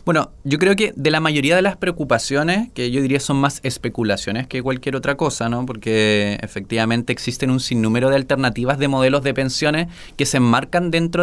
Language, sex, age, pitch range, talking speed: Spanish, male, 20-39, 125-160 Hz, 190 wpm